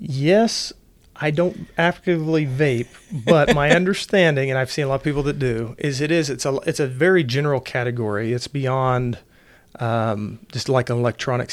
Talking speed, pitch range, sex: 175 wpm, 120-145 Hz, male